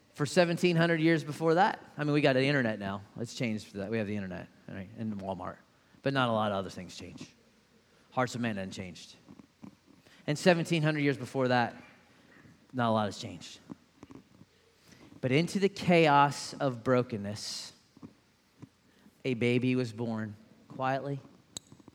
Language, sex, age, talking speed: English, male, 30-49, 155 wpm